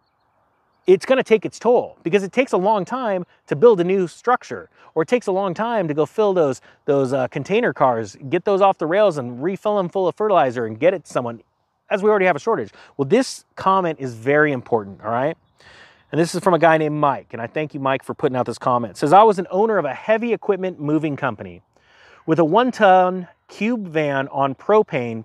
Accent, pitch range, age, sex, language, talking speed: American, 140-205 Hz, 30-49, male, English, 235 wpm